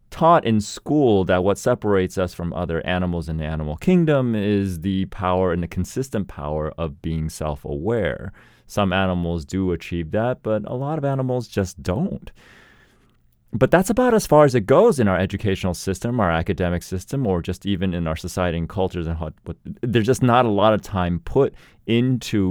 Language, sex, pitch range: English, male, 90-125 Hz